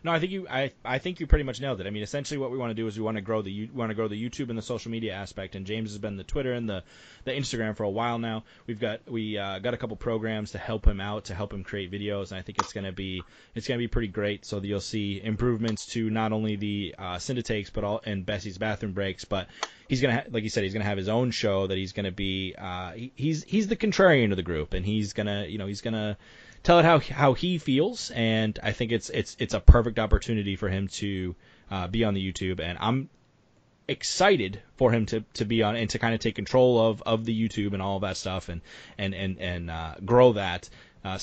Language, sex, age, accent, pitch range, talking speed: English, male, 20-39, American, 95-120 Hz, 275 wpm